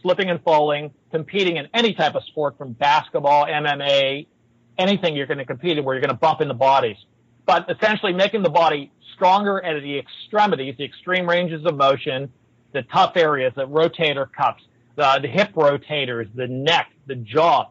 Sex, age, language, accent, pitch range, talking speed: male, 40-59, English, American, 140-190 Hz, 185 wpm